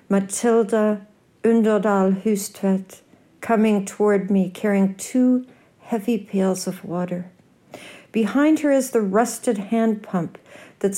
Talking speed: 110 wpm